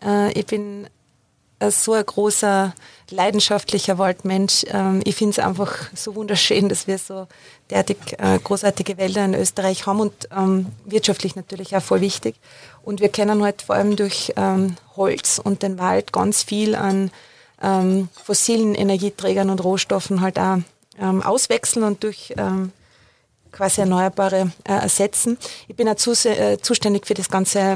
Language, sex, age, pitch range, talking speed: German, female, 30-49, 190-210 Hz, 140 wpm